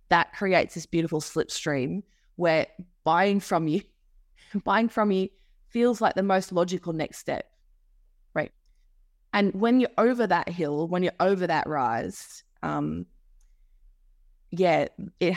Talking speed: 135 wpm